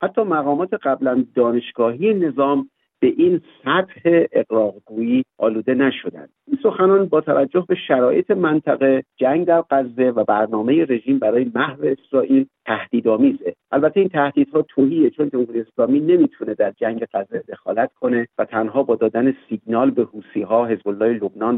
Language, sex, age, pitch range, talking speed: Persian, male, 50-69, 120-170 Hz, 140 wpm